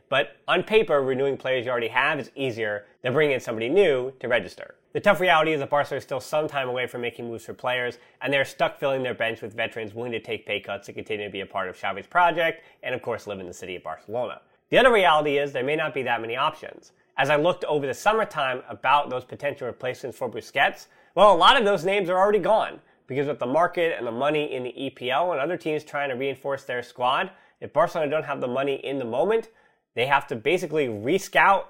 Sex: male